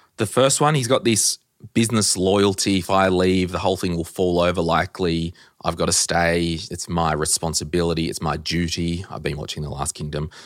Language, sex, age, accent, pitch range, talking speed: English, male, 30-49, Australian, 85-110 Hz, 195 wpm